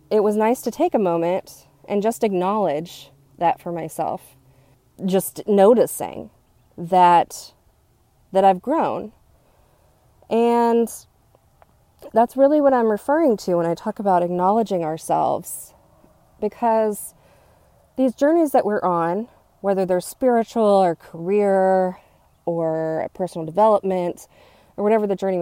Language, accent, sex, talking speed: English, American, female, 120 wpm